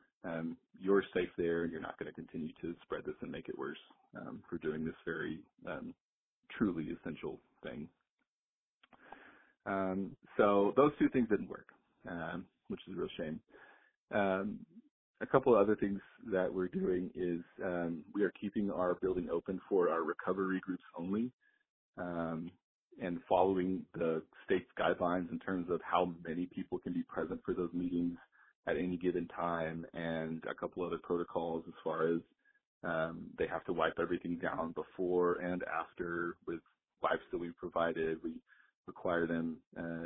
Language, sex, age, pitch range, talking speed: English, male, 30-49, 85-95 Hz, 165 wpm